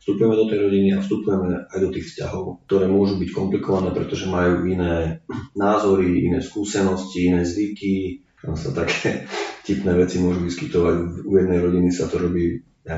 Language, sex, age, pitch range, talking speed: Slovak, male, 30-49, 90-100 Hz, 165 wpm